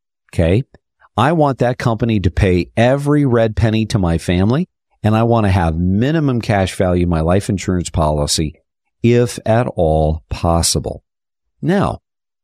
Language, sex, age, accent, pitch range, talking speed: English, male, 50-69, American, 85-120 Hz, 150 wpm